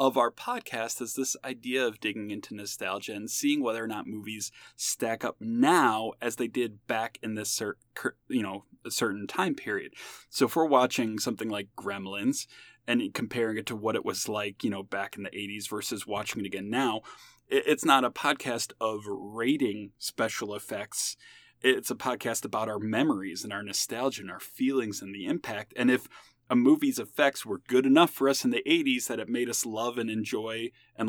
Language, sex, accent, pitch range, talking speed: English, male, American, 110-160 Hz, 195 wpm